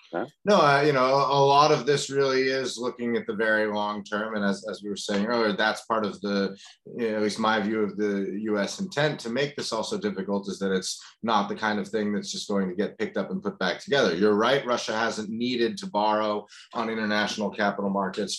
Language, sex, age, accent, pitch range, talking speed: English, male, 30-49, American, 100-125 Hz, 235 wpm